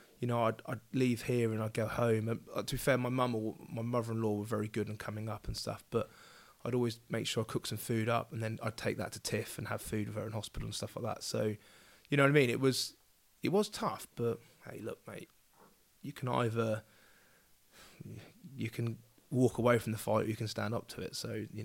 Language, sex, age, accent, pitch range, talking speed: English, male, 20-39, British, 110-120 Hz, 245 wpm